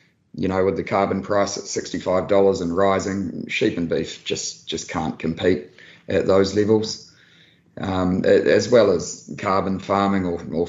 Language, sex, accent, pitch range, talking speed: English, male, Australian, 95-105 Hz, 155 wpm